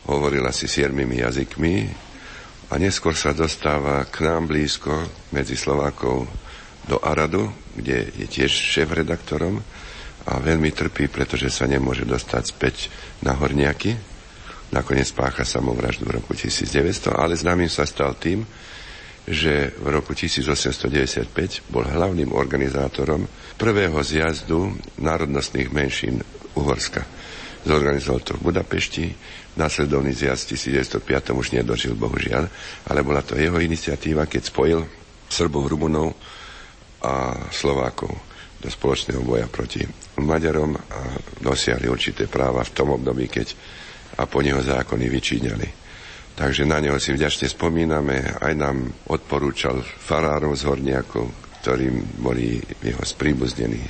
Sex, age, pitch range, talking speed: male, 60-79, 65-80 Hz, 120 wpm